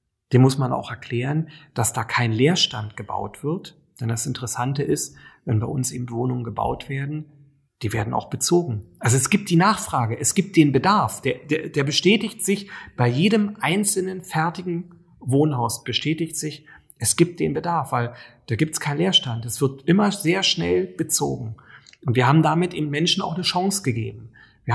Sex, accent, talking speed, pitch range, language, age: male, German, 180 wpm, 120-165 Hz, German, 40-59